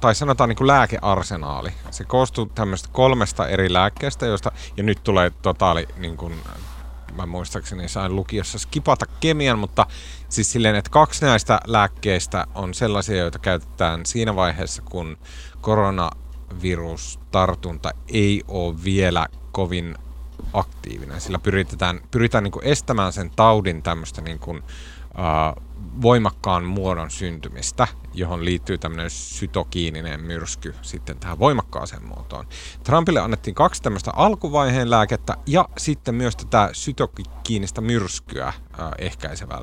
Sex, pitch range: male, 80-110 Hz